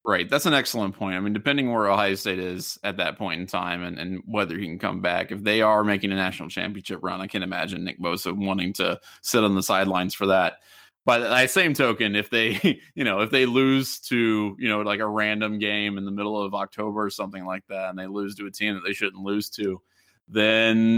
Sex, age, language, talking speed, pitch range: male, 20-39, English, 240 wpm, 100-120 Hz